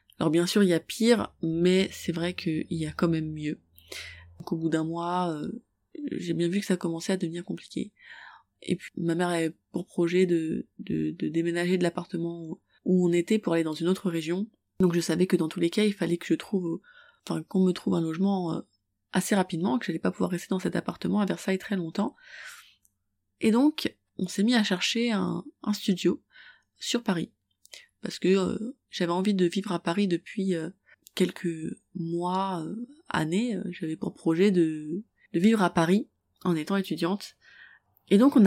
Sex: female